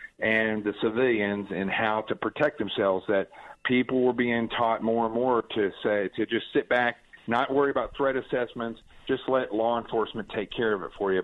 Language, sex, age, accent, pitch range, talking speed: English, male, 40-59, American, 110-130 Hz, 200 wpm